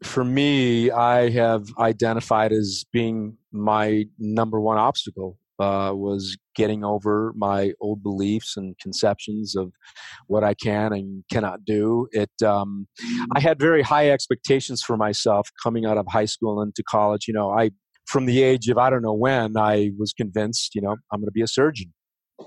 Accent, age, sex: American, 40-59, male